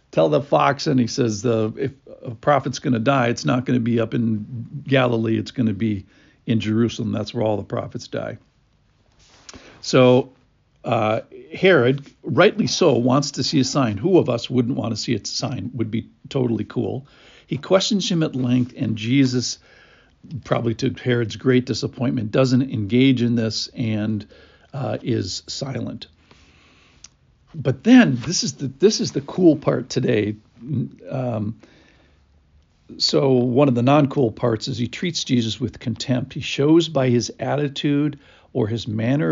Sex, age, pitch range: male, 60-79, 115-140 Hz